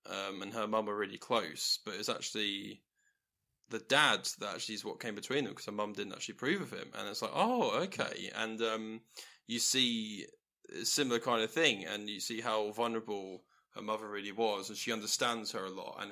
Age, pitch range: 10-29, 105-115 Hz